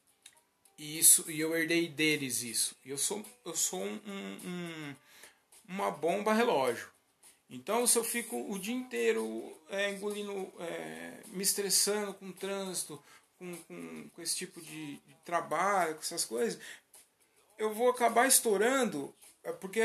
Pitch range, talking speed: 155-230 Hz, 140 wpm